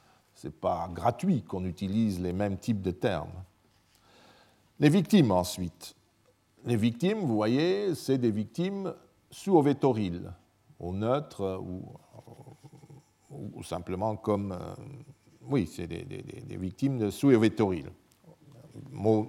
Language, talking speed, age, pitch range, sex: French, 120 wpm, 50-69, 100-135 Hz, male